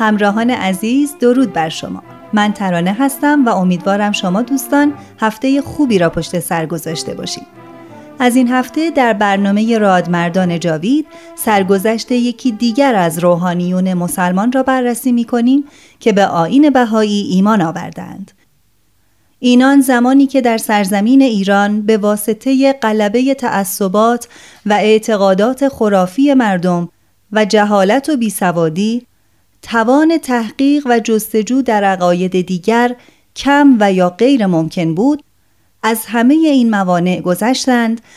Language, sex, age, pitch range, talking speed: Persian, female, 30-49, 190-255 Hz, 120 wpm